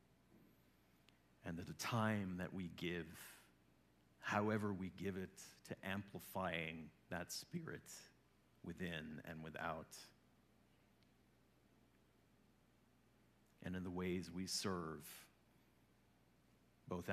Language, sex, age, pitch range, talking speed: English, male, 40-59, 65-95 Hz, 90 wpm